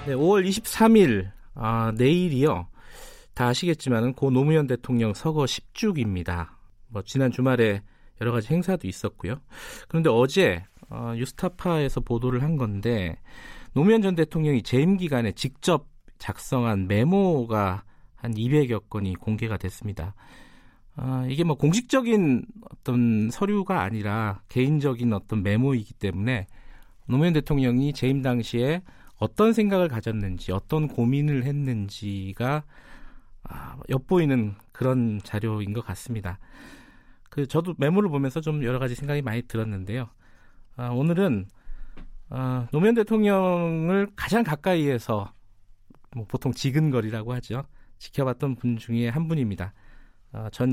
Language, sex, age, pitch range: Korean, male, 40-59, 105-150 Hz